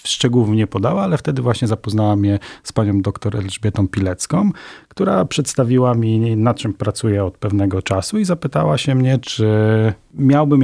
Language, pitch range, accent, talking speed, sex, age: Polish, 100-125 Hz, native, 160 wpm, male, 40-59